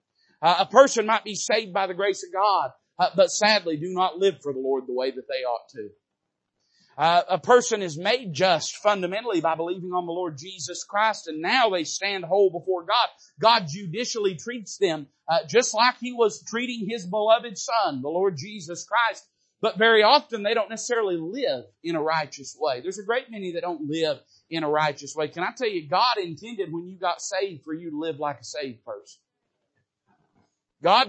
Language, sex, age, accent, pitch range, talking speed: English, male, 40-59, American, 170-230 Hz, 205 wpm